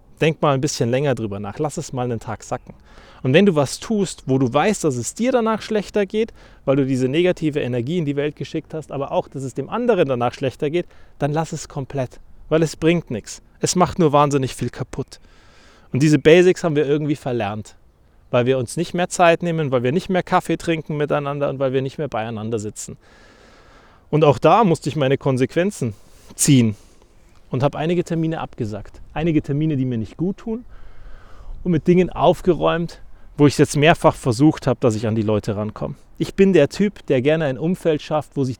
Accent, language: German, German